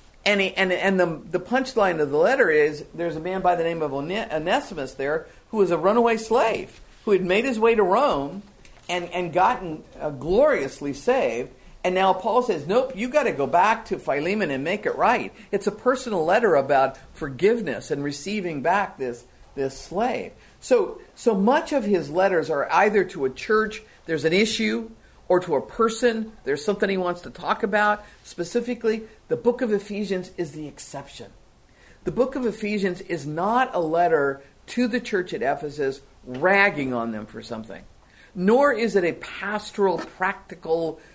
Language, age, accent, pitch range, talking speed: English, 50-69, American, 155-220 Hz, 180 wpm